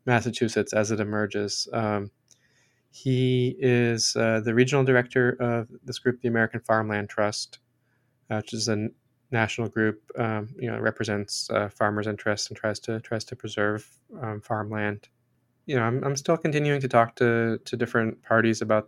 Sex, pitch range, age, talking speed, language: male, 105-125 Hz, 20-39, 165 wpm, English